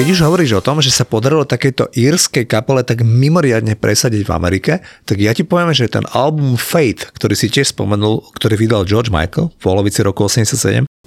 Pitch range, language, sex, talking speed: 110-130 Hz, Slovak, male, 195 wpm